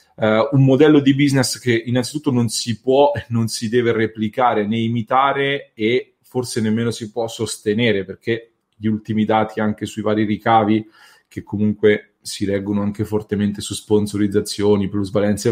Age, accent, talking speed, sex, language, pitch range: 30-49, Italian, 150 wpm, male, English, 110-130 Hz